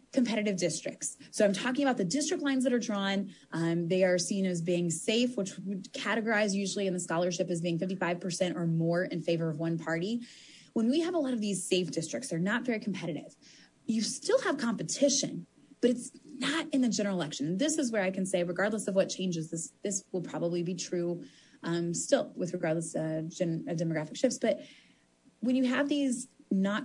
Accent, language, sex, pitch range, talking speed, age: American, English, female, 185-255 Hz, 200 wpm, 20-39